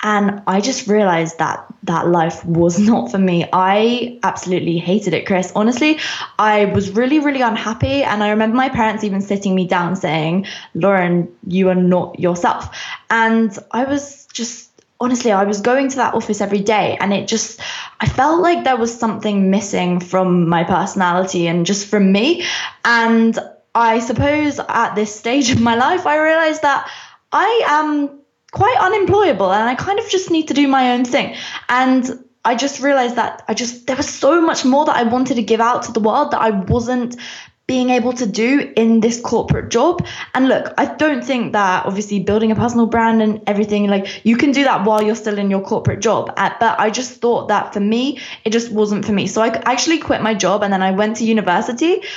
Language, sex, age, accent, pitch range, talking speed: English, female, 20-39, British, 200-255 Hz, 200 wpm